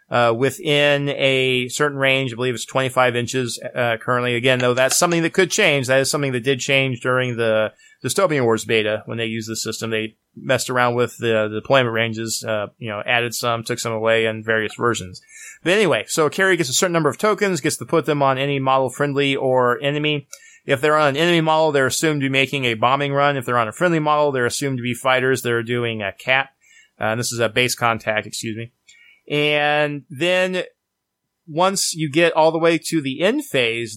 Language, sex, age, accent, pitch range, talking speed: English, male, 30-49, American, 120-150 Hz, 225 wpm